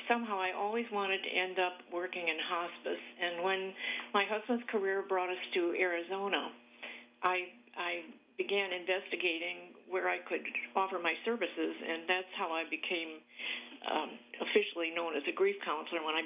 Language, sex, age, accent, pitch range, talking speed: English, female, 50-69, American, 175-210 Hz, 160 wpm